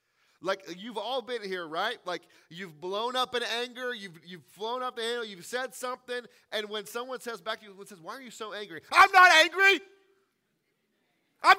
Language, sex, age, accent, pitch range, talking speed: English, male, 30-49, American, 175-250 Hz, 200 wpm